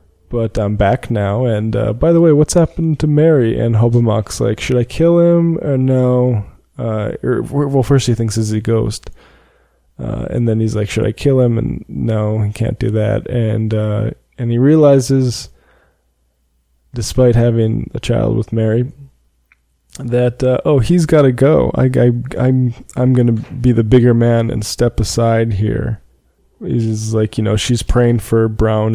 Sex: male